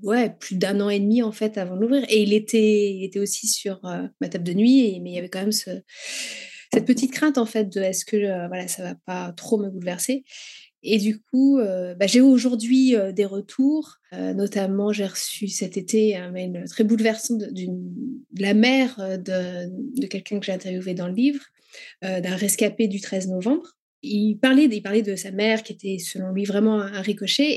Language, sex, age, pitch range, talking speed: French, female, 30-49, 190-230 Hz, 230 wpm